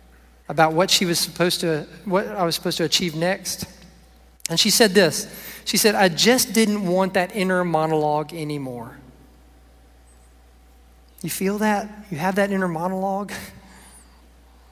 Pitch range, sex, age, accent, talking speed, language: 155-205 Hz, male, 40-59, American, 145 wpm, English